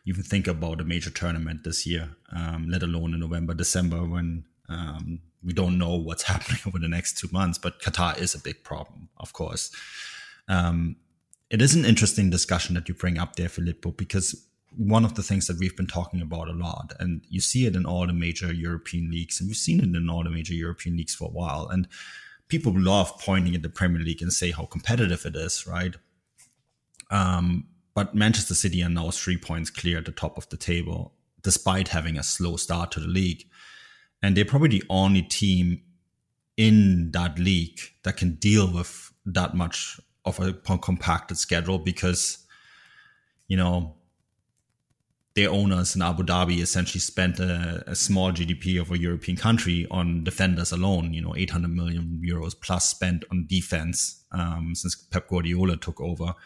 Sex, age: male, 20-39